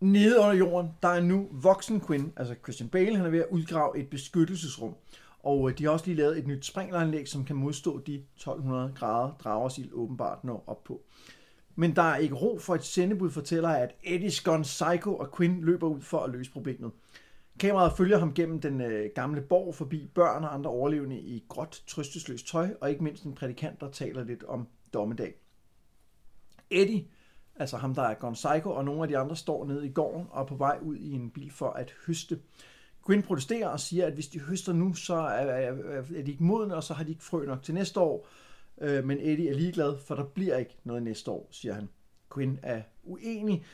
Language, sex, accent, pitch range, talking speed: Danish, male, native, 135-175 Hz, 210 wpm